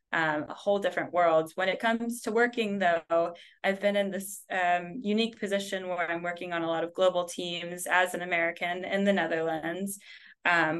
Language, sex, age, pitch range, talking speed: English, female, 20-39, 170-195 Hz, 190 wpm